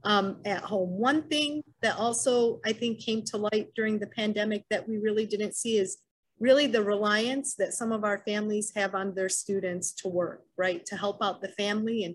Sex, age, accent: female, 40-59, American